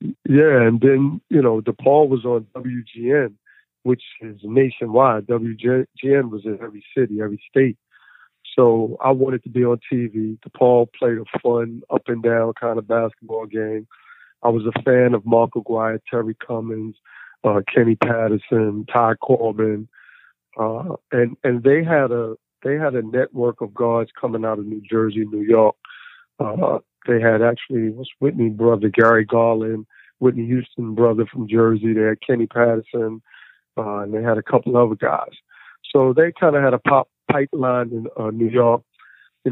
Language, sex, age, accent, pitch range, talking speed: English, male, 50-69, American, 110-125 Hz, 165 wpm